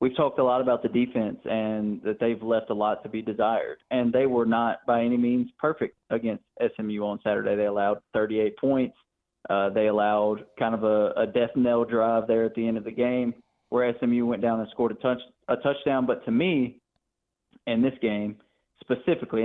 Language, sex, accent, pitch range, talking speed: English, male, American, 110-125 Hz, 205 wpm